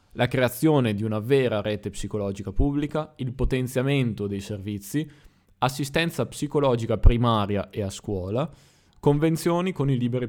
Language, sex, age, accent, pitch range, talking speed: Italian, male, 20-39, native, 105-125 Hz, 130 wpm